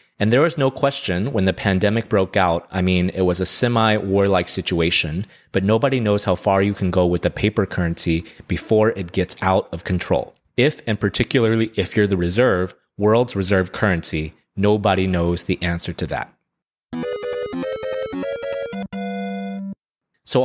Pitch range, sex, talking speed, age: 95-110 Hz, male, 155 wpm, 30-49